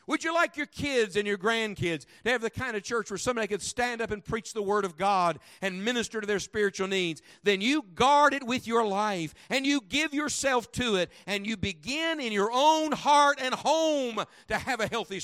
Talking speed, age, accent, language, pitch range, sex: 225 wpm, 50-69, American, English, 180-245 Hz, male